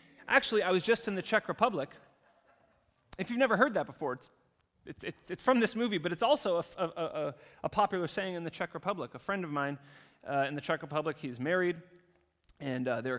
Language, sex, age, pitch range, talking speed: English, male, 30-49, 135-185 Hz, 215 wpm